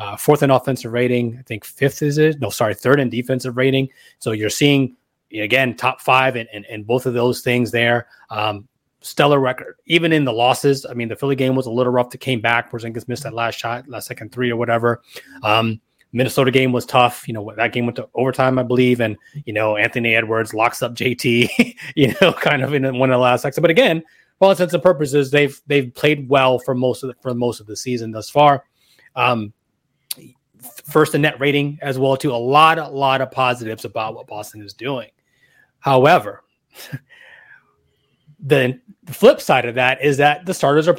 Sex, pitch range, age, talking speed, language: male, 120-145 Hz, 30-49, 210 wpm, English